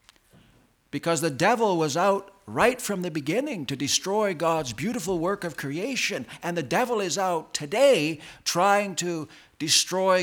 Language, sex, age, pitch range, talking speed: English, male, 60-79, 125-190 Hz, 145 wpm